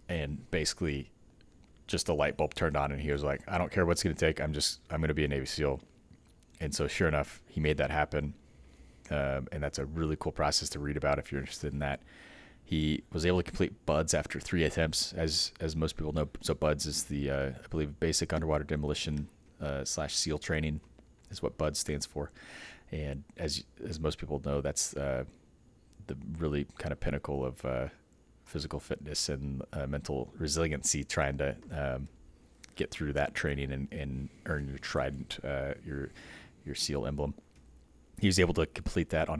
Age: 30-49